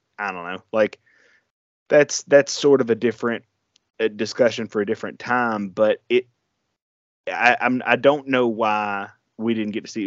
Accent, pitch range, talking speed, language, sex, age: American, 105-115 Hz, 175 wpm, English, male, 20-39